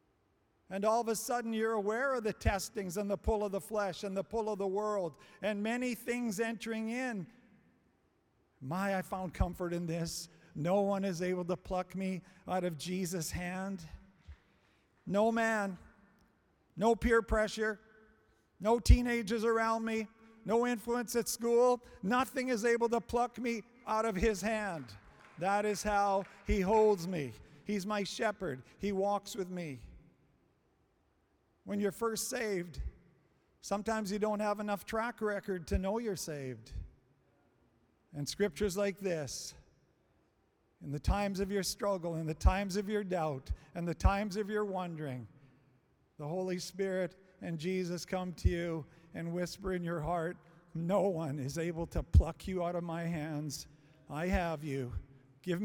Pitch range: 165-215 Hz